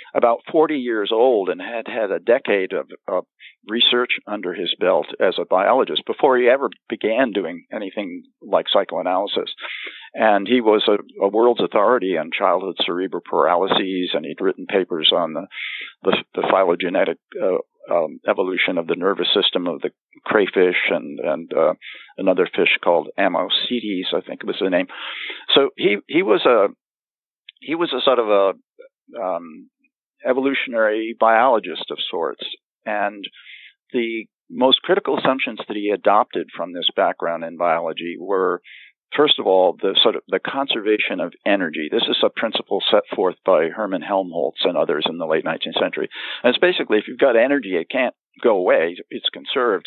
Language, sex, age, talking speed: English, male, 50-69, 165 wpm